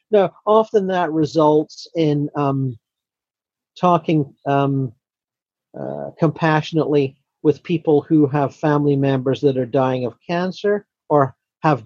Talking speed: 115 wpm